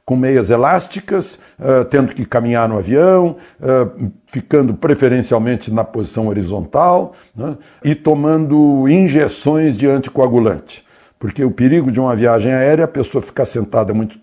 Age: 60-79